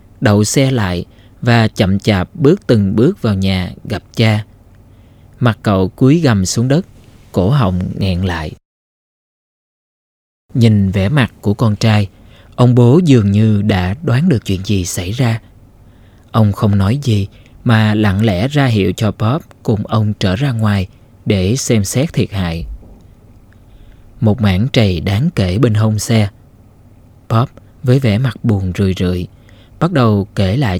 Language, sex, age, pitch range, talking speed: Vietnamese, male, 20-39, 100-115 Hz, 155 wpm